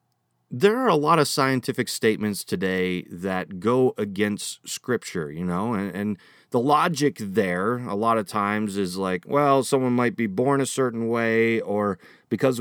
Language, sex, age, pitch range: English, male, 30-49, 105-140 Hz